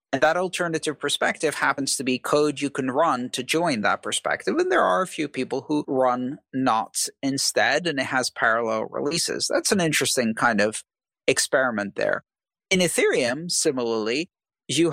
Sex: male